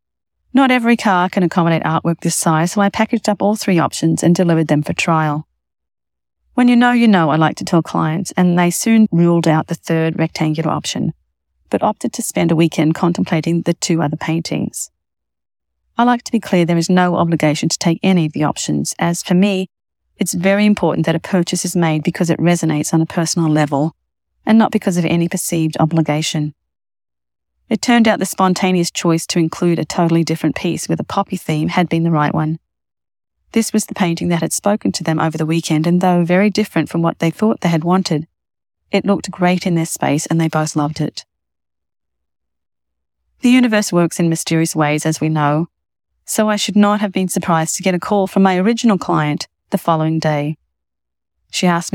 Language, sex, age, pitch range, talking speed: English, female, 40-59, 155-185 Hz, 200 wpm